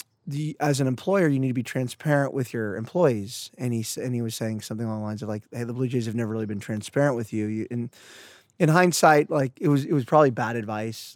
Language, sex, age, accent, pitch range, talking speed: English, male, 20-39, American, 115-145 Hz, 255 wpm